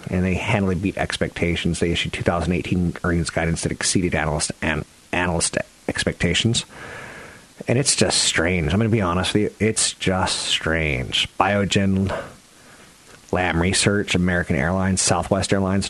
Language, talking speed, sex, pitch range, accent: English, 140 wpm, male, 85-110 Hz, American